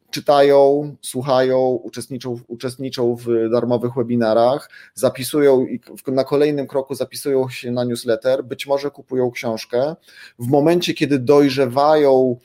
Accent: native